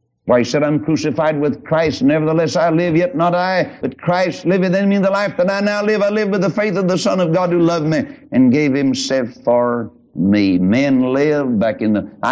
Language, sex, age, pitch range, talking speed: English, male, 60-79, 120-200 Hz, 240 wpm